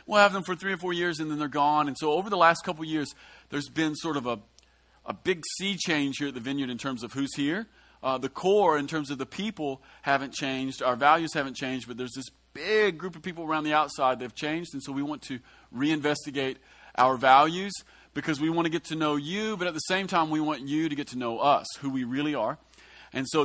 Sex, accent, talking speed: male, American, 255 wpm